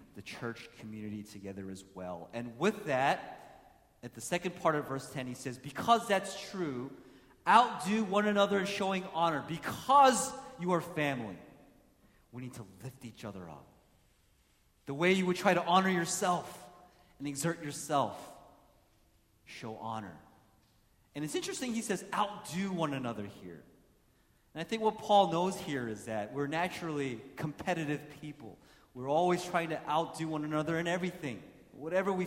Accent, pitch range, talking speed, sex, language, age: American, 130-185 Hz, 155 wpm, male, English, 30-49